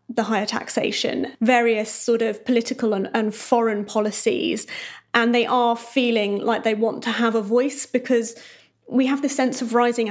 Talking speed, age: 170 wpm, 30-49